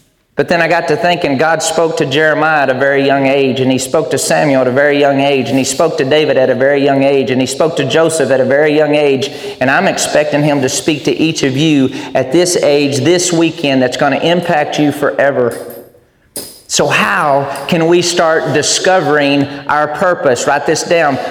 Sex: male